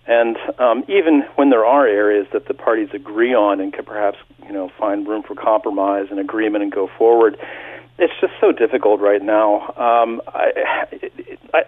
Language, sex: English, male